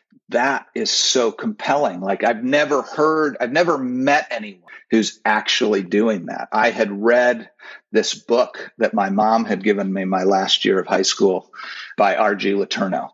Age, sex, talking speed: 40-59, male, 165 wpm